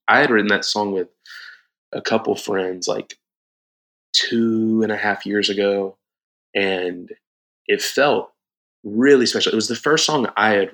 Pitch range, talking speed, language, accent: 95-110 Hz, 155 wpm, English, American